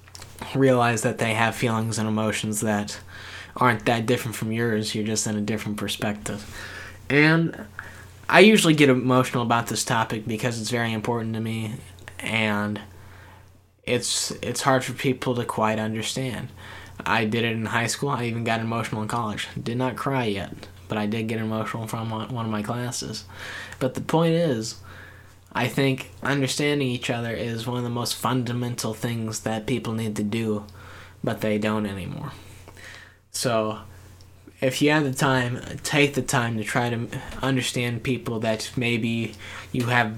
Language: English